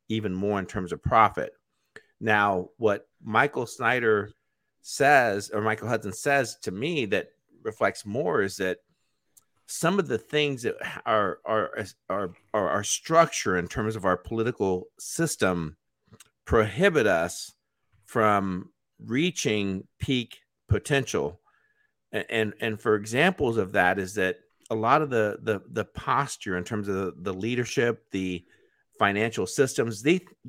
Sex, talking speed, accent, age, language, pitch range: male, 140 wpm, American, 50-69, English, 100-135 Hz